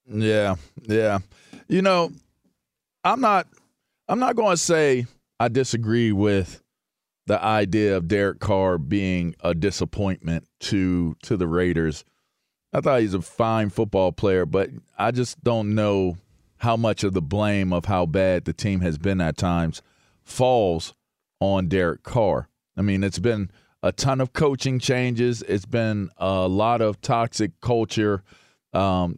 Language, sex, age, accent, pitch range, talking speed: English, male, 40-59, American, 95-115 Hz, 150 wpm